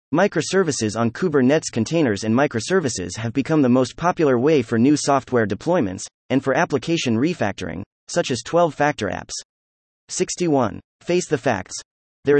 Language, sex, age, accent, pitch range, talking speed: English, male, 30-49, American, 110-155 Hz, 140 wpm